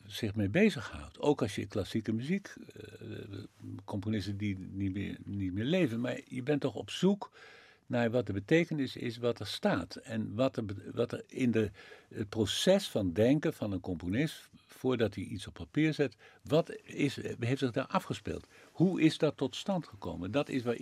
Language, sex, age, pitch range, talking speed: Dutch, male, 50-69, 100-140 Hz, 185 wpm